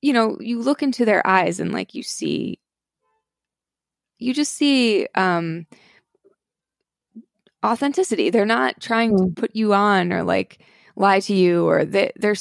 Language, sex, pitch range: English, female, 180-230 Hz